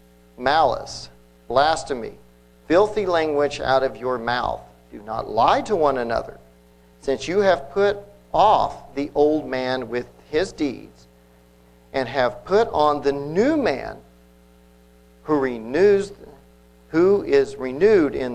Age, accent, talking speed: 50-69, American, 125 wpm